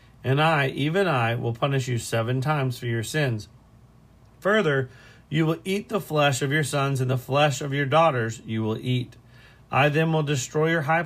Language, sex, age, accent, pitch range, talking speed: English, male, 40-59, American, 120-150 Hz, 195 wpm